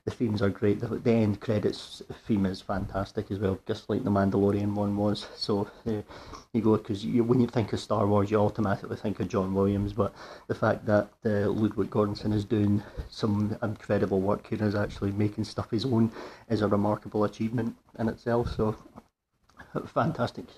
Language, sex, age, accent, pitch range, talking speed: English, male, 40-59, British, 105-120 Hz, 175 wpm